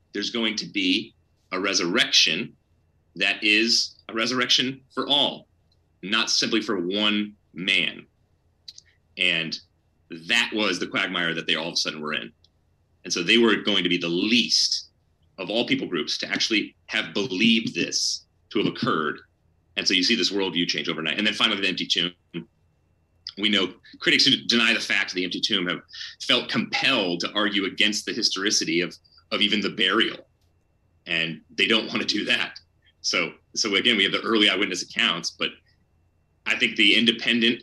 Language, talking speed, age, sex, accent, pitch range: English, 175 wpm, 30-49, male, American, 85-115 Hz